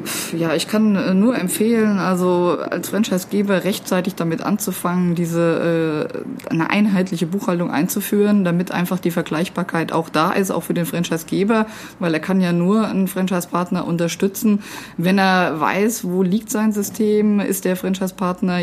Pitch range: 170-190 Hz